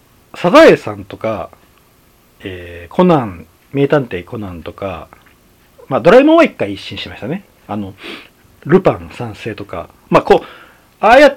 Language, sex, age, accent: Japanese, male, 40-59, native